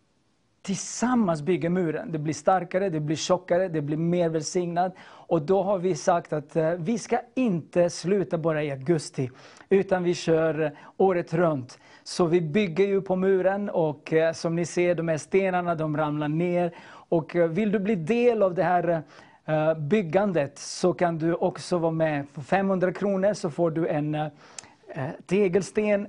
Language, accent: Swedish, native